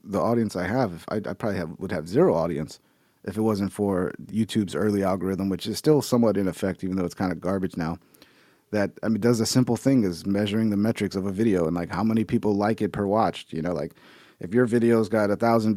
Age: 30-49